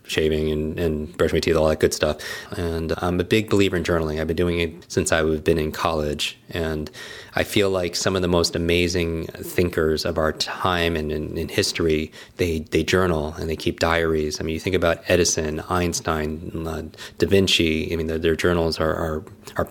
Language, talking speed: English, 200 wpm